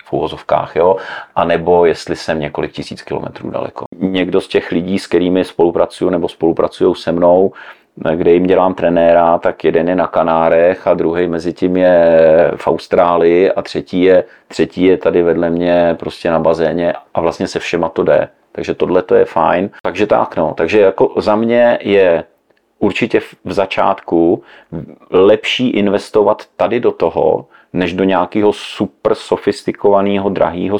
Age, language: 40-59, Czech